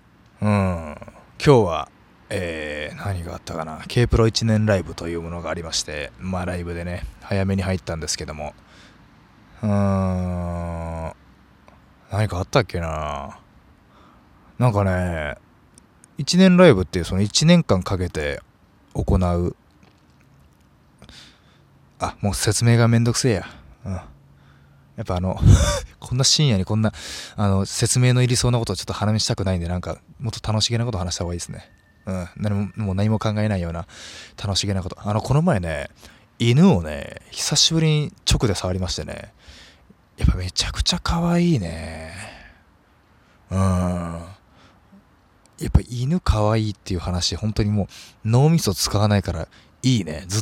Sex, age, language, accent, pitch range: male, 20-39, Japanese, native, 85-110 Hz